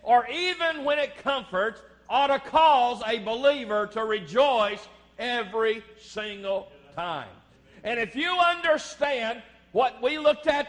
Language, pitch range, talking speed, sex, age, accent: English, 200-280 Hz, 130 wpm, male, 50-69, American